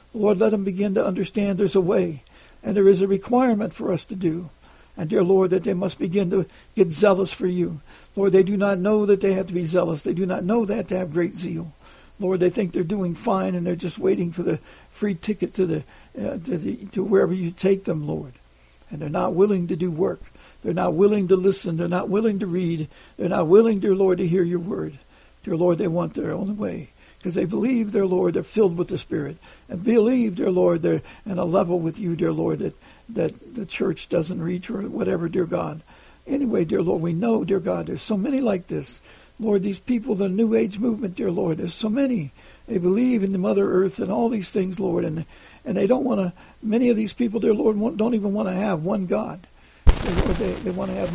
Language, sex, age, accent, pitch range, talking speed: English, male, 60-79, American, 180-210 Hz, 230 wpm